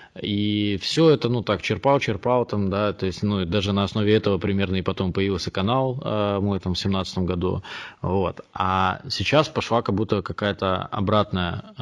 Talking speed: 180 wpm